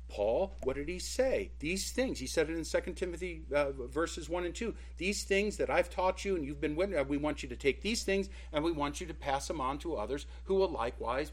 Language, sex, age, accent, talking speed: English, male, 50-69, American, 255 wpm